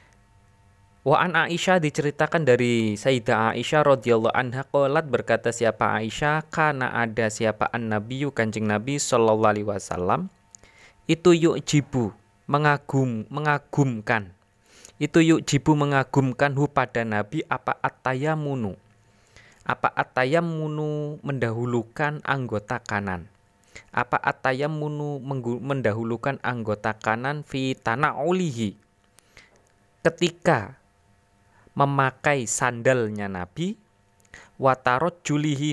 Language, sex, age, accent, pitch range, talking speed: Indonesian, male, 20-39, native, 100-145 Hz, 80 wpm